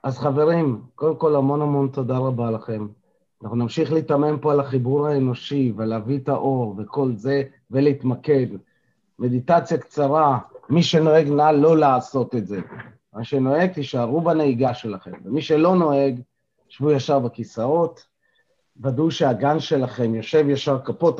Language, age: Hebrew, 30-49